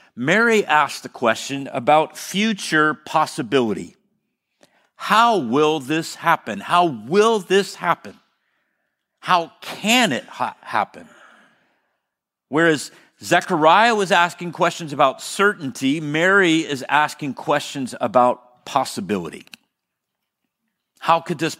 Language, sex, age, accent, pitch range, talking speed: English, male, 50-69, American, 140-185 Hz, 100 wpm